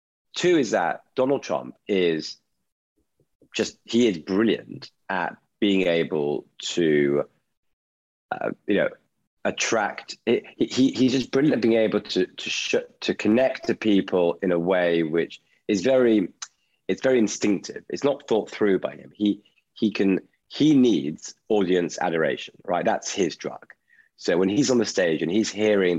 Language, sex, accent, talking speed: English, male, British, 155 wpm